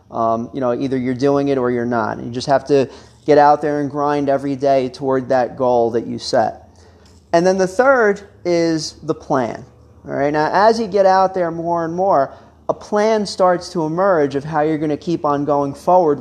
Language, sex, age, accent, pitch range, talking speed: English, male, 30-49, American, 130-180 Hz, 220 wpm